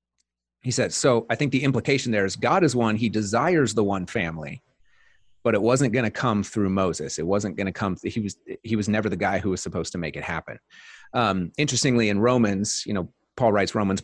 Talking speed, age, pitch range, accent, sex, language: 225 wpm, 30-49, 100-120 Hz, American, male, English